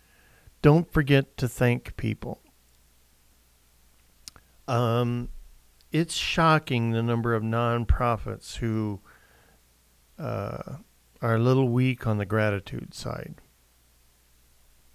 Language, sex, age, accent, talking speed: English, male, 50-69, American, 90 wpm